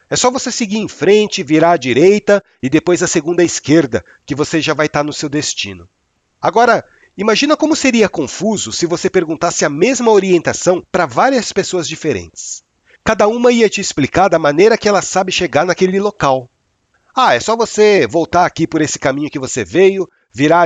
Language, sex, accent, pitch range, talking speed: Portuguese, male, Brazilian, 150-195 Hz, 185 wpm